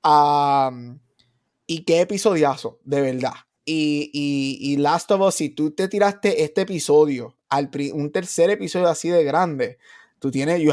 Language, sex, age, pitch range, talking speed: Spanish, male, 20-39, 140-175 Hz, 160 wpm